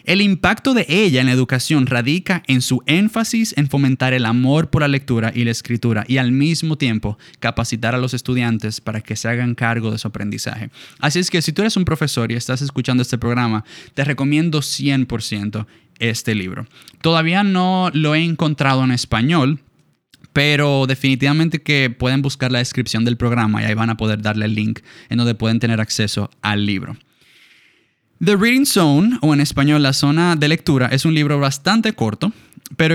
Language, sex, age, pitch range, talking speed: Spanish, male, 20-39, 120-160 Hz, 185 wpm